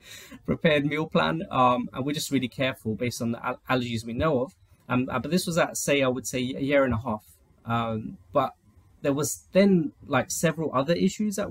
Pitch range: 110-130 Hz